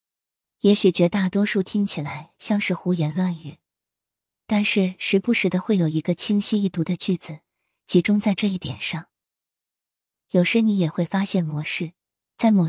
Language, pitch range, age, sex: Chinese, 160-200 Hz, 20-39, female